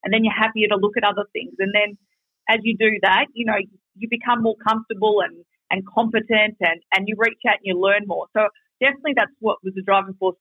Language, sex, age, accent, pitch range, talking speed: English, female, 30-49, Australian, 185-220 Hz, 235 wpm